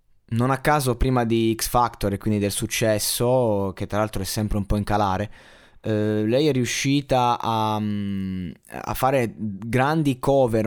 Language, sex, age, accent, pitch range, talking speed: Italian, male, 20-39, native, 105-130 Hz, 165 wpm